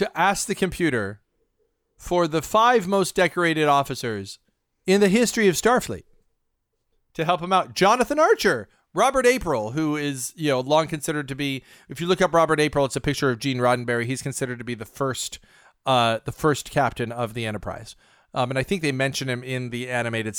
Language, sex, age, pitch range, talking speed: English, male, 40-59, 135-185 Hz, 195 wpm